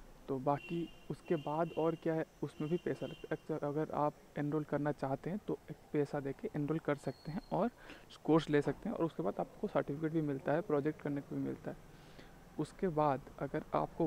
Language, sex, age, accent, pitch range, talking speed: Hindi, male, 20-39, native, 140-155 Hz, 205 wpm